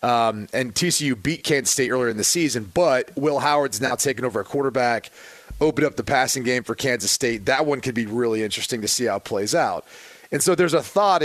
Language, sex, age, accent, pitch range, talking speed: English, male, 30-49, American, 125-155 Hz, 230 wpm